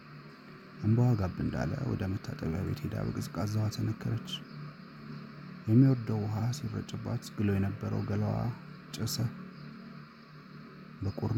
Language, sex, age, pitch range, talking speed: Amharic, male, 30-49, 100-130 Hz, 95 wpm